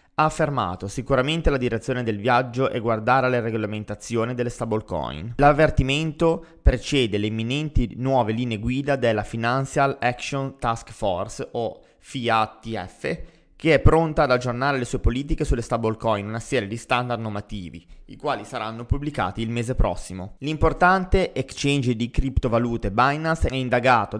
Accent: native